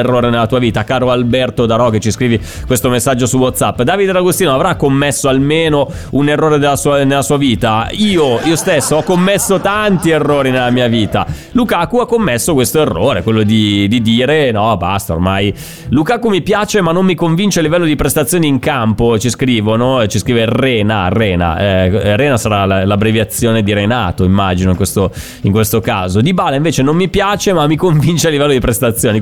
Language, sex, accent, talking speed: Italian, male, native, 185 wpm